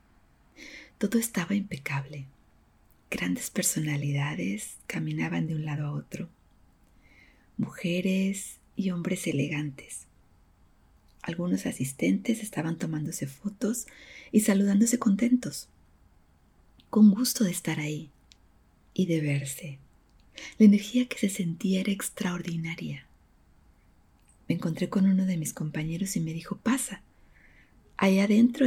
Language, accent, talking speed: English, Mexican, 105 wpm